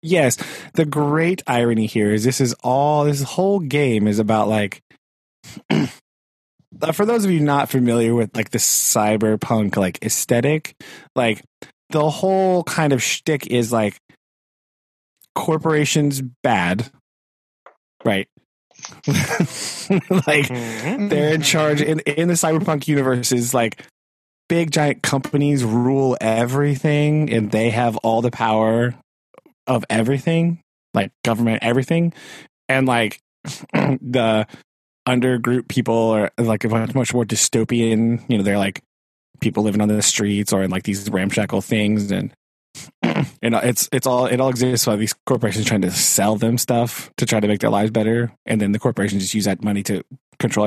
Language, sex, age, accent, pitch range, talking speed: English, male, 20-39, American, 110-145 Hz, 145 wpm